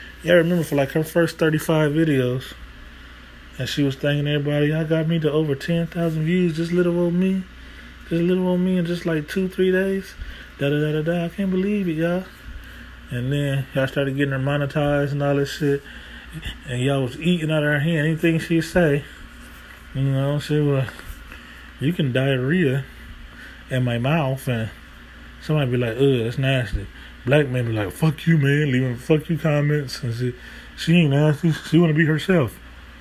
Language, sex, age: English, male, 20-39